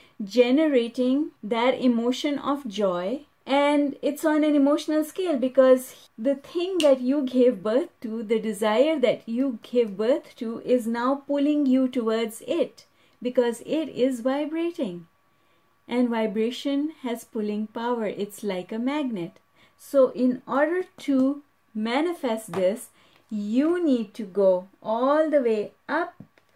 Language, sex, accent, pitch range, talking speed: English, female, Indian, 225-285 Hz, 135 wpm